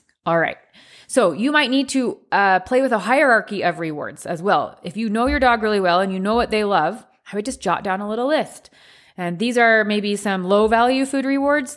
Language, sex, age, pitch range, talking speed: English, female, 20-39, 175-225 Hz, 235 wpm